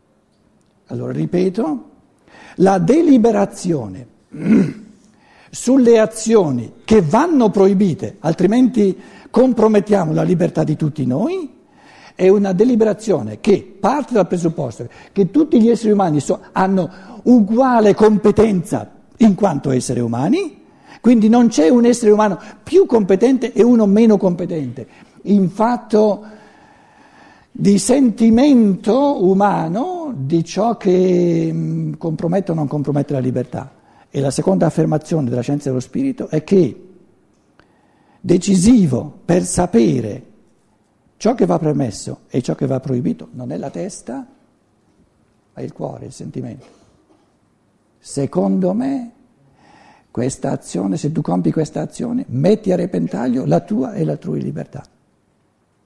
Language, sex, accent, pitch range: Italian, male, native, 160-230 Hz